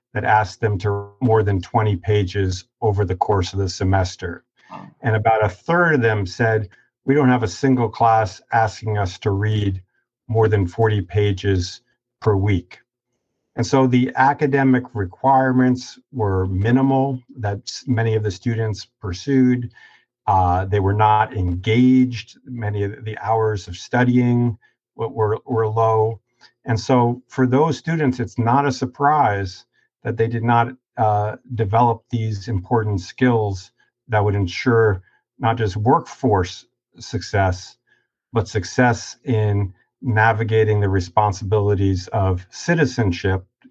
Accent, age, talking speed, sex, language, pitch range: American, 50-69, 135 wpm, male, English, 100-125 Hz